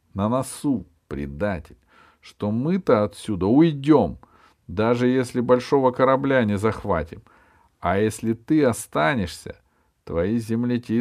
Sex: male